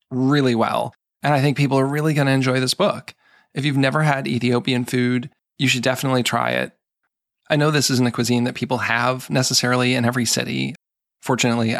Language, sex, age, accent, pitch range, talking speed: English, male, 20-39, American, 115-130 Hz, 195 wpm